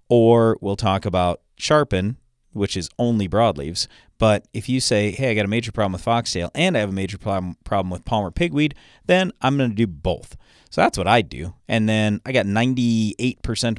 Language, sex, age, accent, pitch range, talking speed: English, male, 40-59, American, 90-120 Hz, 200 wpm